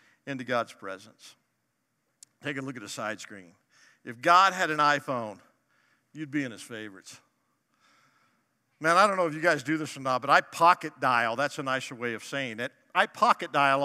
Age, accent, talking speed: 50-69, American, 195 wpm